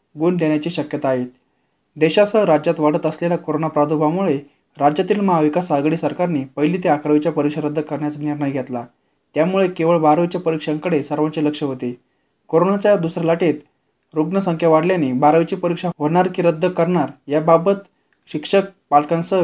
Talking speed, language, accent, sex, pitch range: 135 wpm, Marathi, native, male, 150-180 Hz